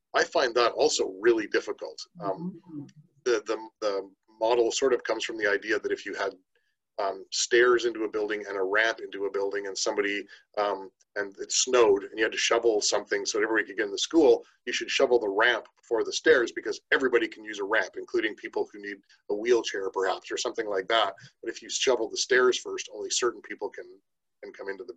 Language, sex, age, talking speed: English, male, 30-49, 220 wpm